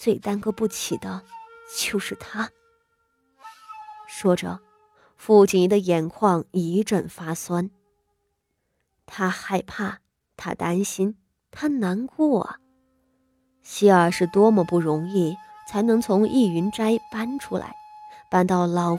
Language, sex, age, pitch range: Chinese, female, 20-39, 175-265 Hz